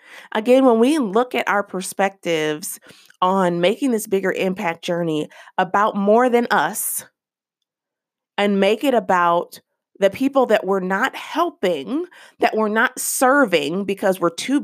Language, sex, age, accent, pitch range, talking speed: English, female, 30-49, American, 180-235 Hz, 140 wpm